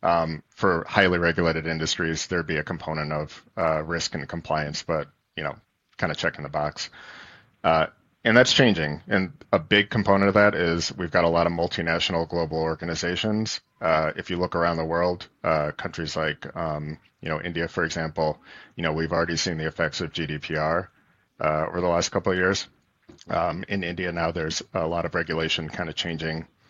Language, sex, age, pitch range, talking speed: English, male, 30-49, 80-90 Hz, 195 wpm